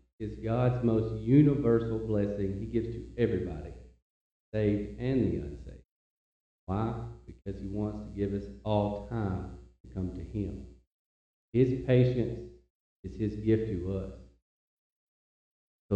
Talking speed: 130 wpm